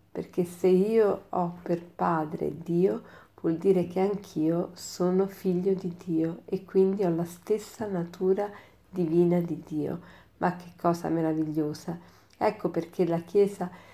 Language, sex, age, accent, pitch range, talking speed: Italian, female, 40-59, native, 170-195 Hz, 140 wpm